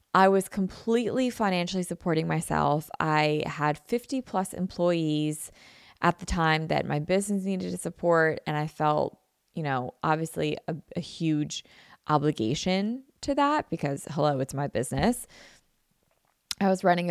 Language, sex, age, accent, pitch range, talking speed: English, female, 20-39, American, 160-200 Hz, 140 wpm